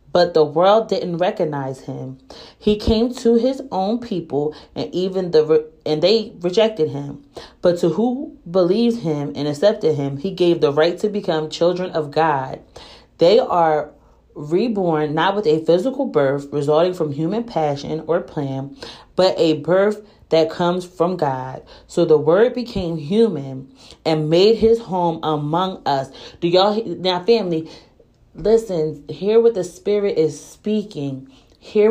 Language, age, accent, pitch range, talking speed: English, 30-49, American, 155-210 Hz, 150 wpm